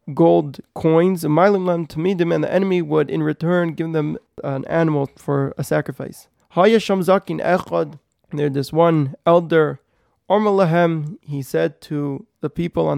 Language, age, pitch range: English, 20-39, 145-170 Hz